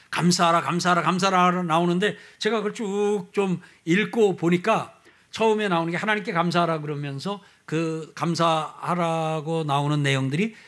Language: Korean